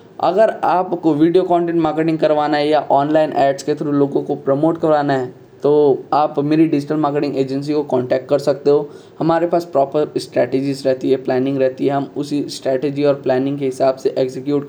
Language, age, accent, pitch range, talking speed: Hindi, 10-29, native, 140-165 Hz, 190 wpm